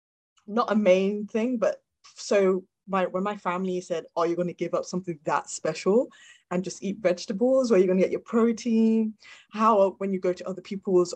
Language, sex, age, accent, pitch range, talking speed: English, female, 20-39, British, 170-205 Hz, 215 wpm